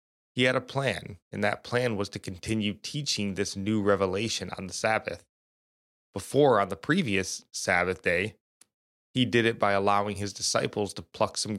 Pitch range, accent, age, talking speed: 95-110 Hz, American, 20-39, 170 wpm